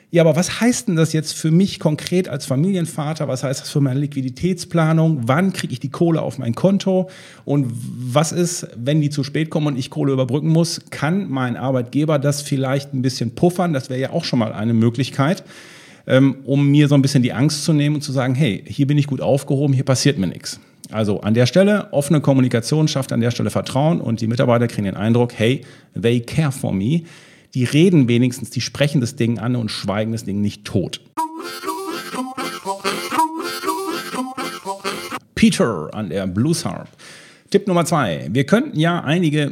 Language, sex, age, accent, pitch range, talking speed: German, male, 40-59, German, 120-165 Hz, 190 wpm